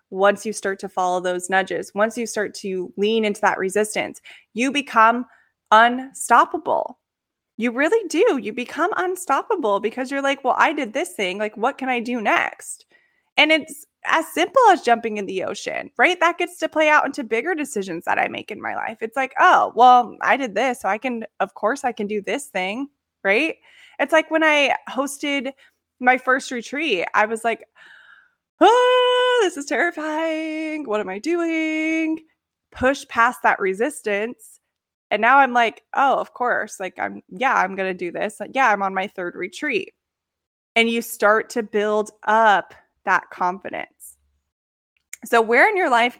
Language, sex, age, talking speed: English, female, 20-39, 180 wpm